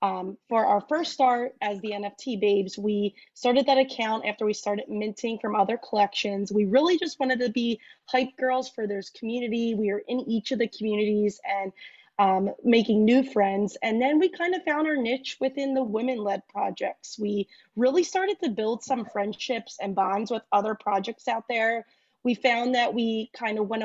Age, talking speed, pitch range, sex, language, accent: 20-39, 190 wpm, 210-255 Hz, female, English, American